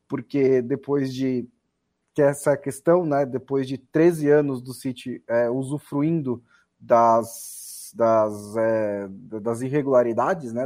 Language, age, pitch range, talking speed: Portuguese, 20-39, 120-140 Hz, 120 wpm